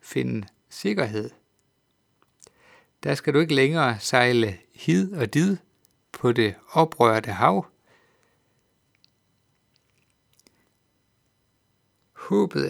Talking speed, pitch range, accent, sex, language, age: 75 wpm, 125-160 Hz, native, male, Danish, 60-79